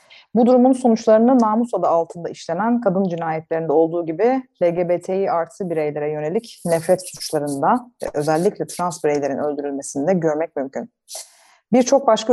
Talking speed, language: 120 wpm, Turkish